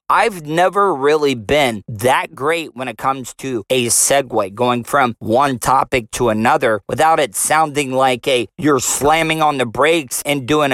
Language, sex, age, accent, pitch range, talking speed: English, male, 40-59, American, 130-170 Hz, 170 wpm